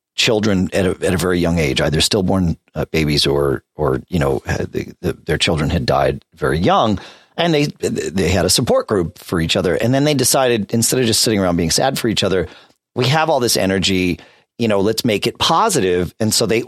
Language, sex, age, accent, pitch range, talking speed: English, male, 40-59, American, 85-130 Hz, 210 wpm